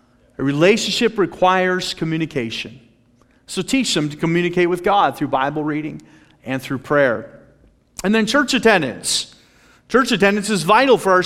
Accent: American